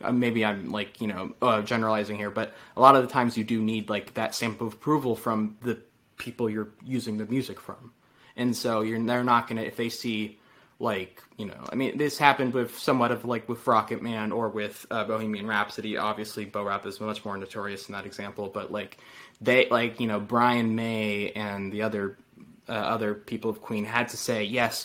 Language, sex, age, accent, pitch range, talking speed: English, male, 20-39, American, 110-125 Hz, 210 wpm